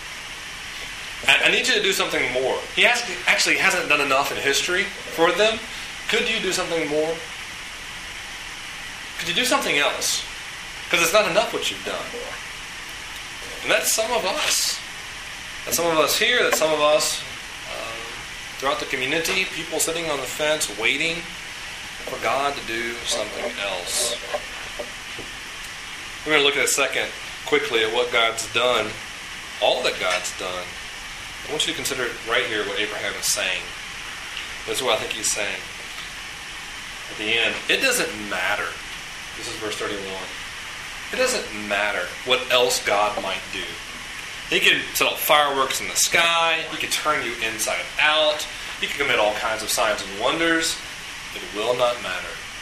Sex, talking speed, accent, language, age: male, 165 wpm, American, English, 30-49